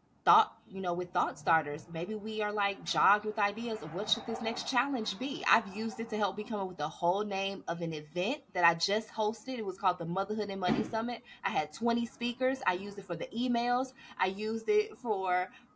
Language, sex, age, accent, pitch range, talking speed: English, female, 20-39, American, 180-230 Hz, 225 wpm